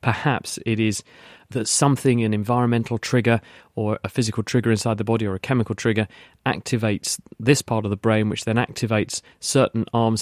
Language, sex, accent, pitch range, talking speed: English, male, British, 105-120 Hz, 175 wpm